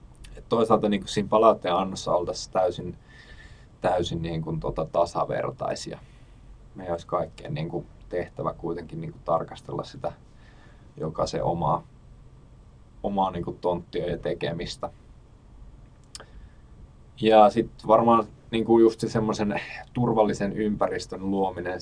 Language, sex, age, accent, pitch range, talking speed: Finnish, male, 20-39, native, 90-115 Hz, 110 wpm